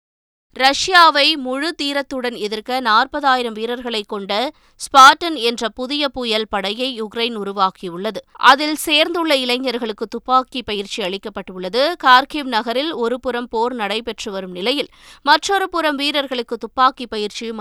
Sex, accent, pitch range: female, native, 220-290 Hz